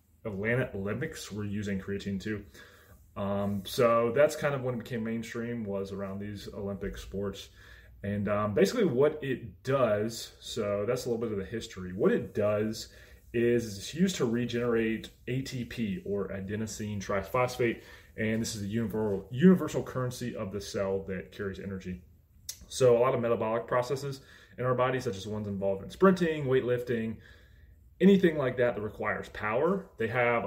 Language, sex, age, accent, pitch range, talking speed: English, male, 20-39, American, 95-120 Hz, 165 wpm